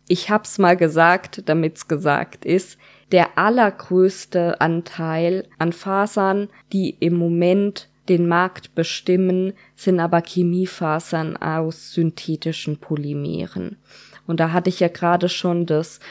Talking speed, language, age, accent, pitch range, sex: 120 wpm, German, 20-39, German, 165-195 Hz, female